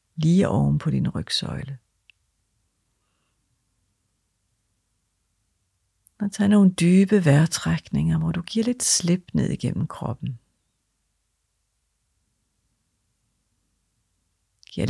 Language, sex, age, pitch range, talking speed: Danish, female, 50-69, 100-145 Hz, 75 wpm